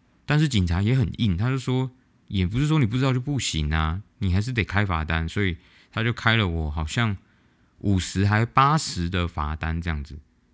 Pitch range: 80-115 Hz